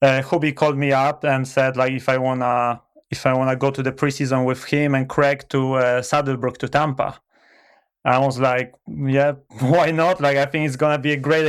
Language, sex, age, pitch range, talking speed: English, male, 20-39, 135-150 Hz, 215 wpm